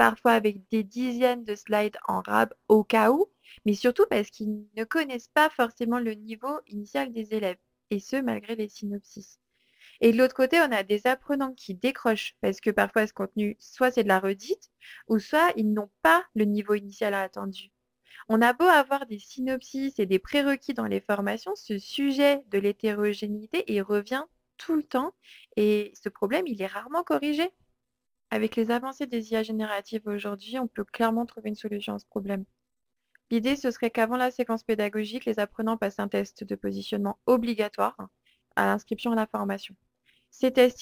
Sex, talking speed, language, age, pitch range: female, 185 wpm, French, 20-39, 200-245 Hz